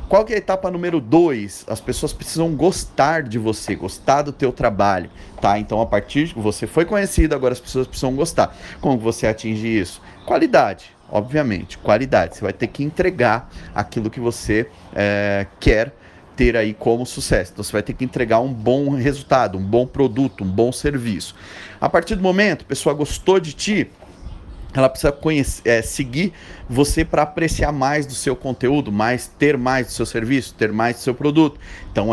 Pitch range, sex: 110-155 Hz, male